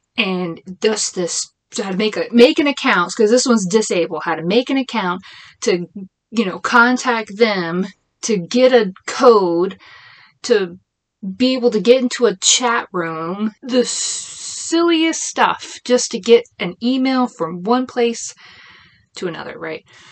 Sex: female